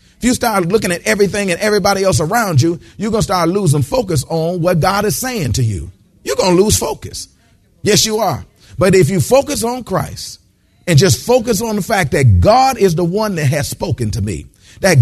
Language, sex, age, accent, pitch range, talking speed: English, male, 40-59, American, 160-240 Hz, 220 wpm